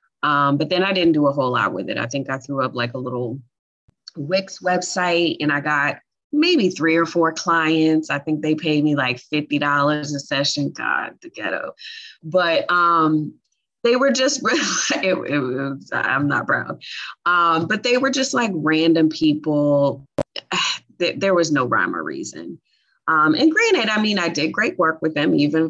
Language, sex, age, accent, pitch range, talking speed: English, female, 20-39, American, 135-170 Hz, 175 wpm